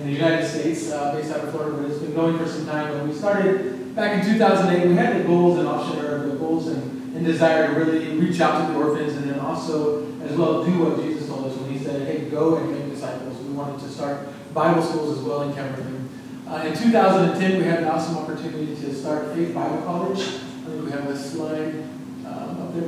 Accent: American